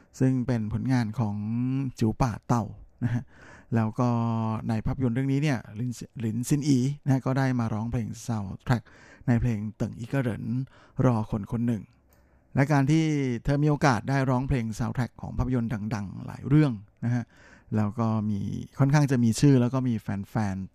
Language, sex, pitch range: Thai, male, 110-130 Hz